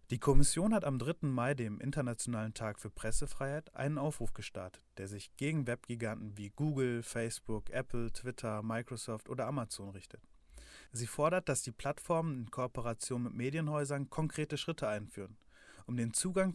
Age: 30-49